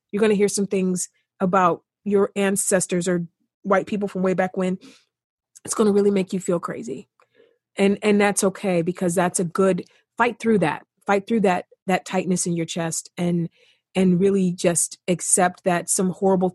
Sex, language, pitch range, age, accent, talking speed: female, English, 180-220 Hz, 40-59, American, 185 wpm